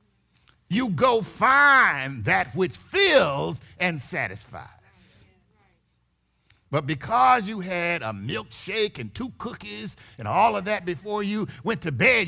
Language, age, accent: English, 50-69, American